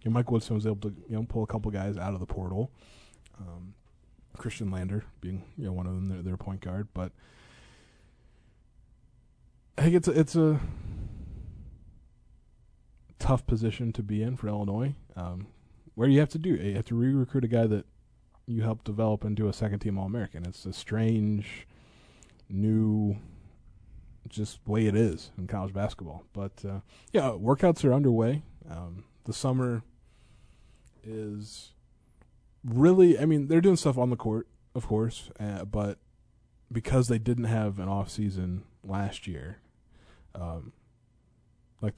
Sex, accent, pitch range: male, American, 95-115 Hz